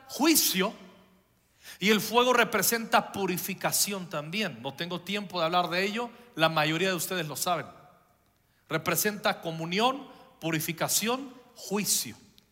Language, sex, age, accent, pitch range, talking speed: Spanish, male, 50-69, Mexican, 190-250 Hz, 115 wpm